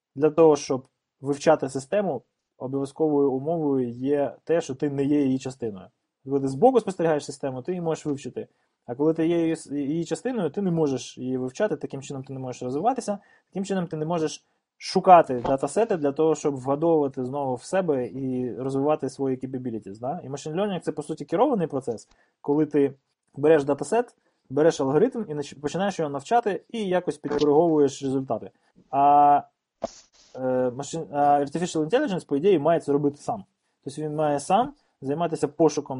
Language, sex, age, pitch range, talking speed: Ukrainian, male, 20-39, 135-165 Hz, 165 wpm